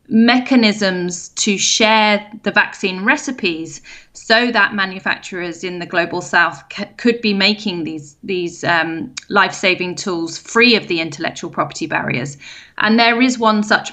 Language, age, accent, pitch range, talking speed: English, 30-49, British, 190-235 Hz, 140 wpm